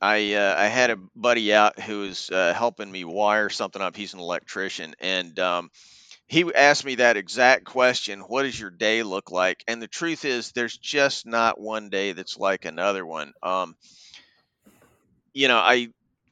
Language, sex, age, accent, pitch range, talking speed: English, male, 40-59, American, 105-130 Hz, 180 wpm